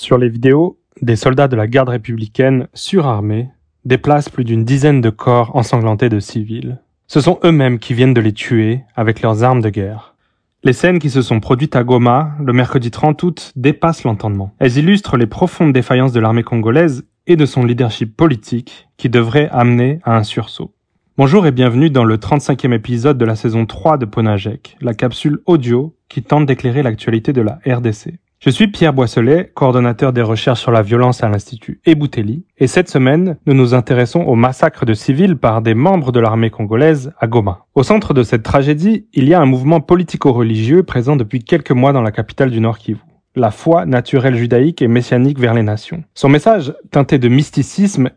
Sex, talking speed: male, 190 wpm